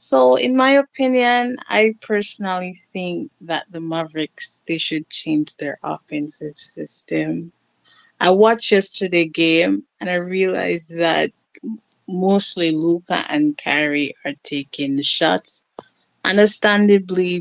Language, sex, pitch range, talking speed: English, female, 155-195 Hz, 115 wpm